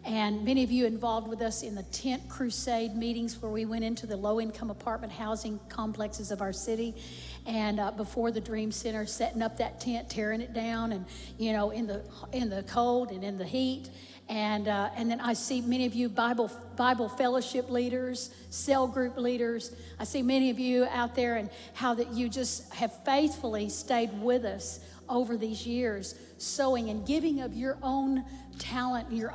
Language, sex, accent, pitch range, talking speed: English, female, American, 220-255 Hz, 190 wpm